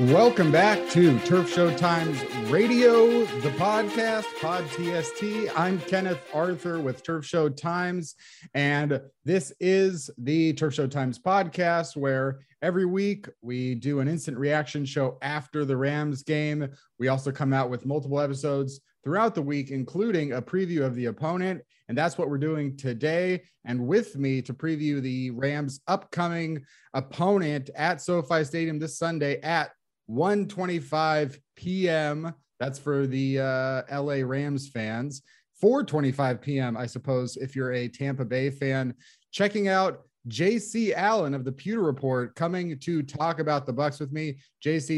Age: 30-49